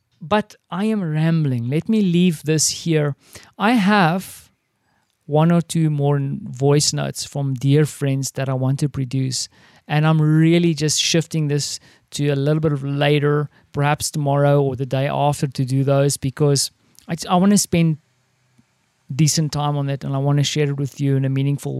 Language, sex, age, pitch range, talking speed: English, male, 50-69, 140-170 Hz, 180 wpm